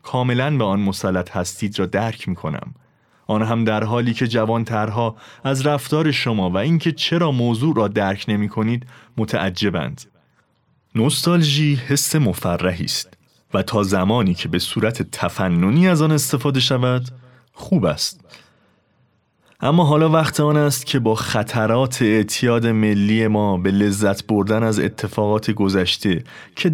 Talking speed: 135 wpm